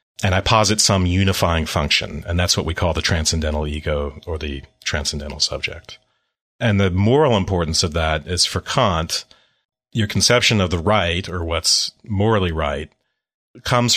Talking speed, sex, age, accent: 160 wpm, male, 40-59, American